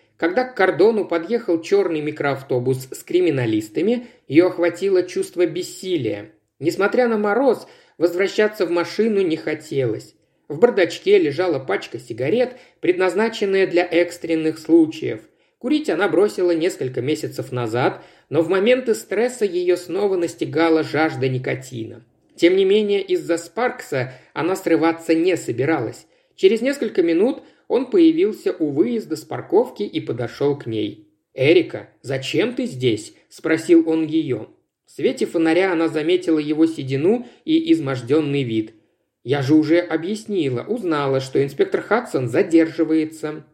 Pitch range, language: 155-225 Hz, Russian